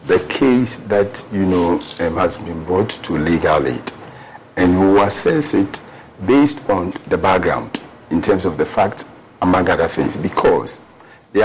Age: 50-69